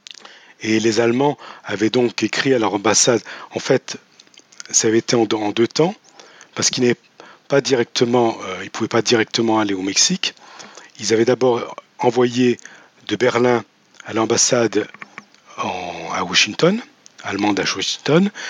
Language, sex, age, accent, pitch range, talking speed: French, male, 40-59, French, 115-145 Hz, 125 wpm